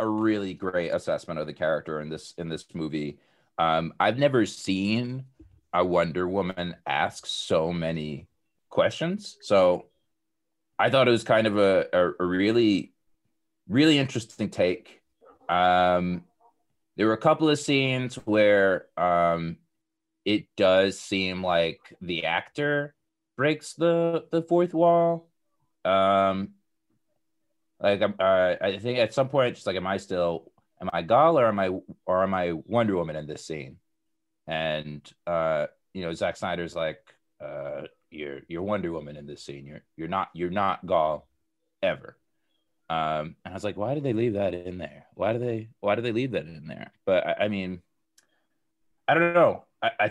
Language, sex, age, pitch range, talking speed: English, male, 20-39, 90-135 Hz, 165 wpm